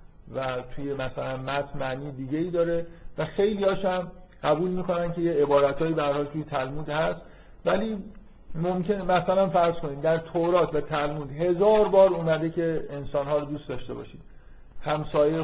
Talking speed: 145 wpm